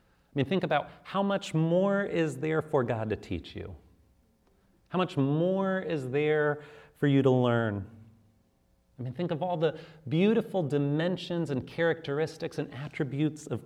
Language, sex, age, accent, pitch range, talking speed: English, male, 40-59, American, 110-160 Hz, 160 wpm